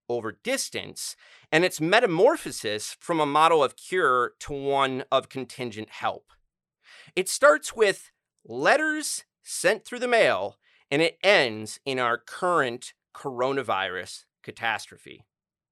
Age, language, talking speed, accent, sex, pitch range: 30-49, English, 120 wpm, American, male, 130-195 Hz